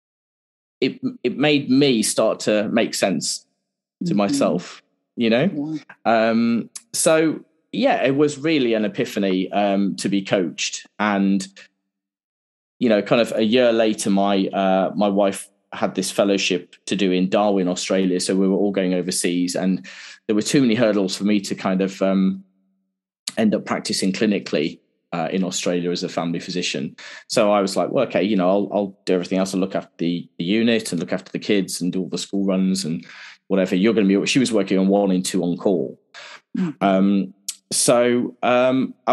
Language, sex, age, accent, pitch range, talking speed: English, male, 20-39, British, 95-115 Hz, 185 wpm